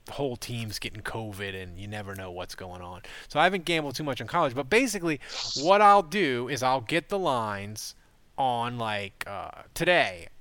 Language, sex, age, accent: English, male, 20-39, American